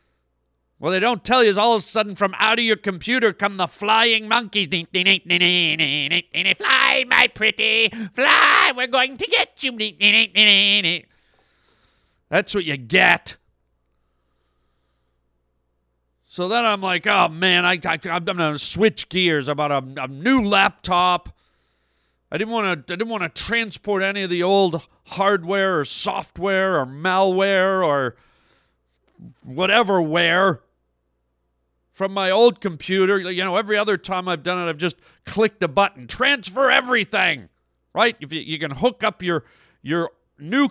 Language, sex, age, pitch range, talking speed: English, male, 40-59, 140-215 Hz, 145 wpm